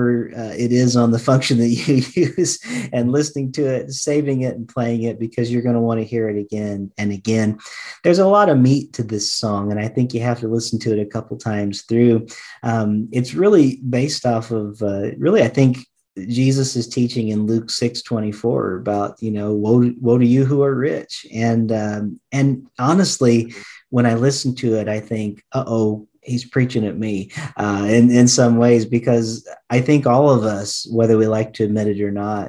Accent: American